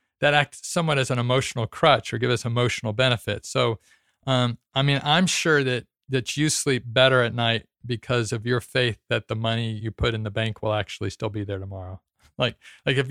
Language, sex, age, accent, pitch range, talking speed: English, male, 40-59, American, 110-135 Hz, 210 wpm